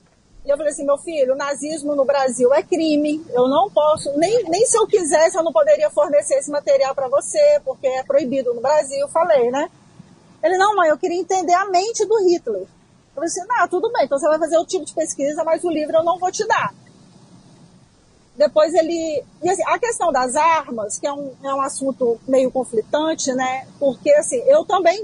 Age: 40-59